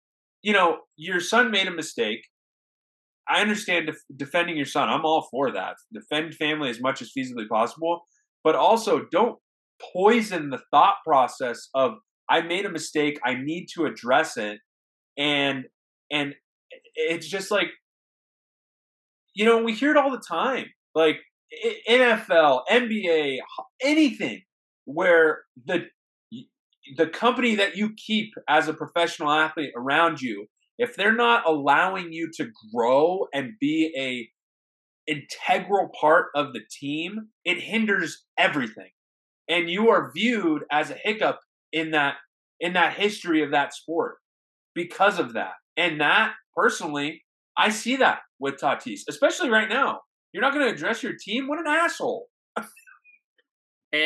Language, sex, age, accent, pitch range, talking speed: English, male, 20-39, American, 150-230 Hz, 140 wpm